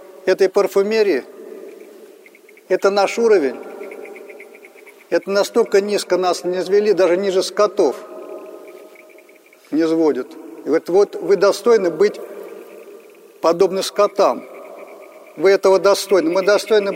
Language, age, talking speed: Russian, 50-69, 95 wpm